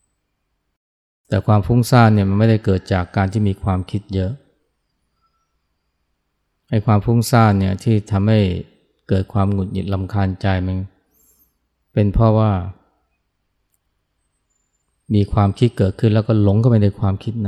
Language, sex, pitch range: Thai, male, 80-105 Hz